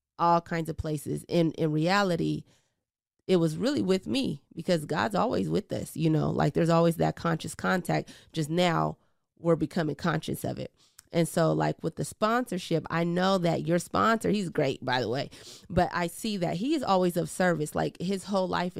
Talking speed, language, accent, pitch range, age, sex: 195 wpm, English, American, 160-190 Hz, 30-49, female